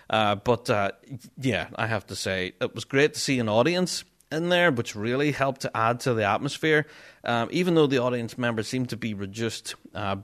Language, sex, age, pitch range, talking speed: English, male, 30-49, 110-150 Hz, 210 wpm